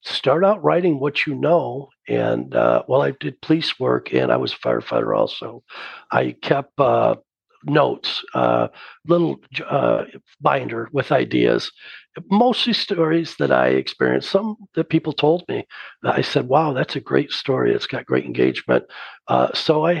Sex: male